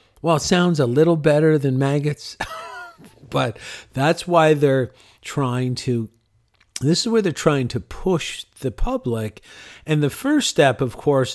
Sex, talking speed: male, 155 wpm